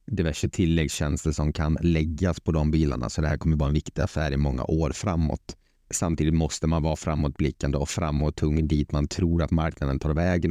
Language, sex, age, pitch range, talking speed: Swedish, male, 30-49, 75-95 Hz, 205 wpm